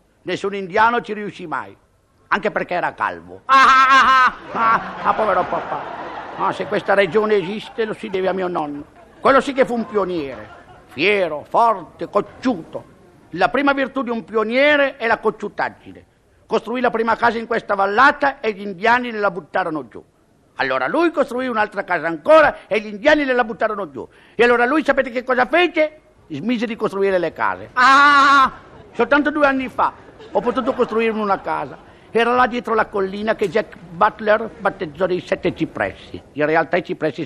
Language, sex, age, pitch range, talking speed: Italian, male, 50-69, 185-245 Hz, 175 wpm